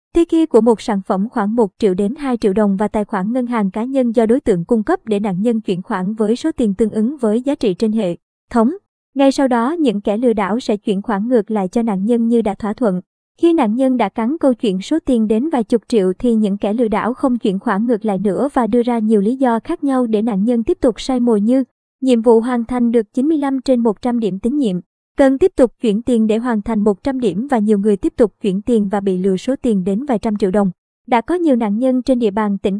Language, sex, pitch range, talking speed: Vietnamese, male, 210-260 Hz, 265 wpm